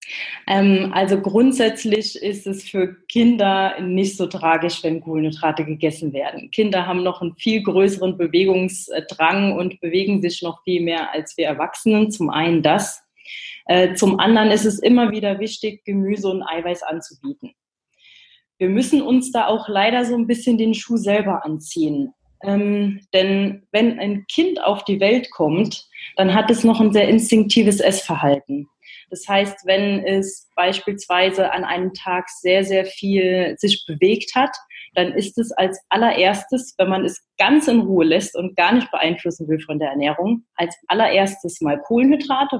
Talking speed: 155 wpm